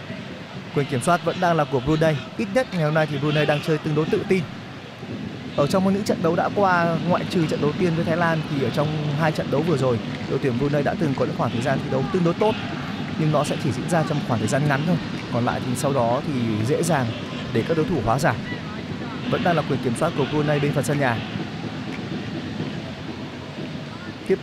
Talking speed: 240 wpm